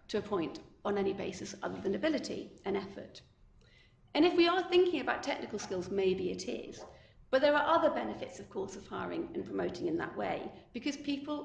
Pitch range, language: 200-285 Hz, English